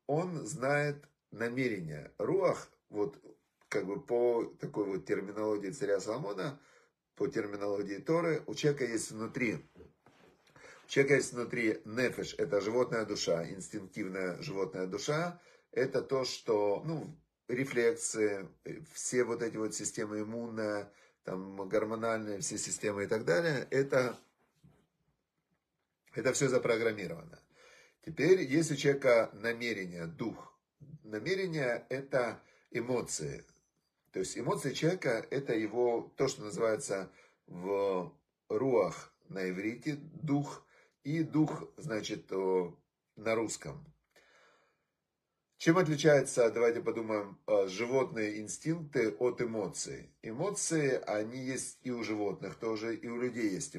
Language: Russian